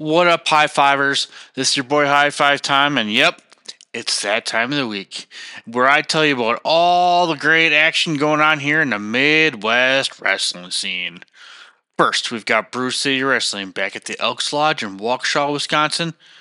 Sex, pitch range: male, 125-165 Hz